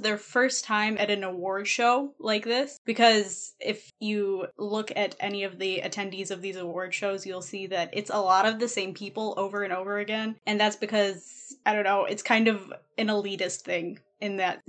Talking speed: 205 wpm